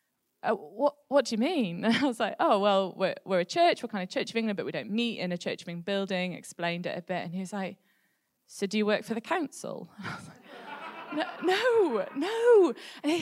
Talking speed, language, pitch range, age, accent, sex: 225 wpm, English, 185-240 Hz, 20-39, British, female